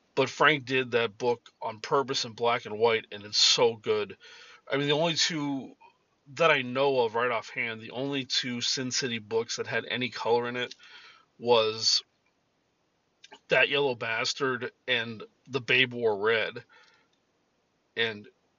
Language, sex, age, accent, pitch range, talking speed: English, male, 40-59, American, 120-165 Hz, 155 wpm